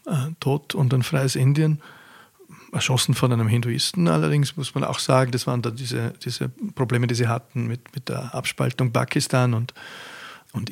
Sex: male